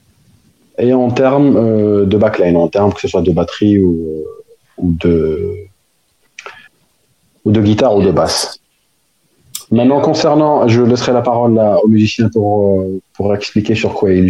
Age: 40-59